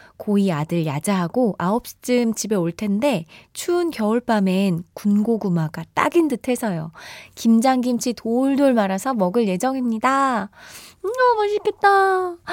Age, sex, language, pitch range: 20-39, female, Korean, 190-265 Hz